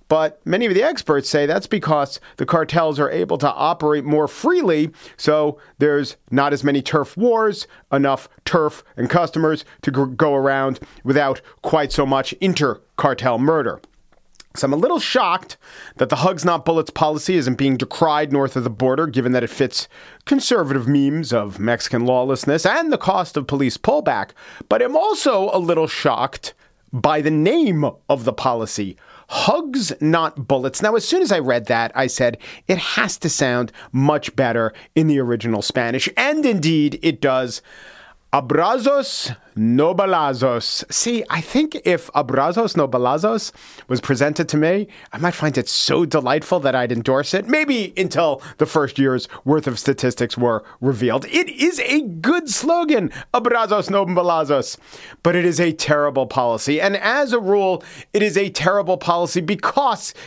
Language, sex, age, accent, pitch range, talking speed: English, male, 40-59, American, 135-185 Hz, 165 wpm